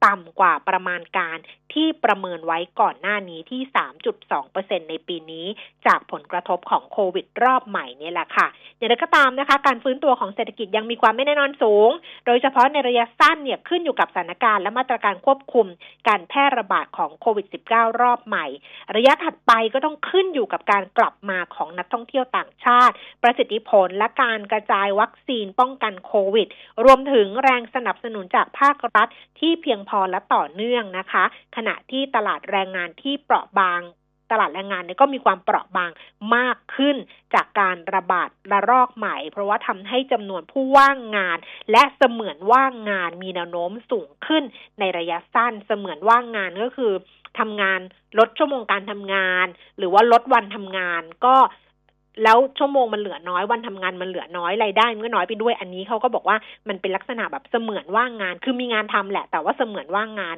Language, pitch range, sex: Thai, 190-255 Hz, female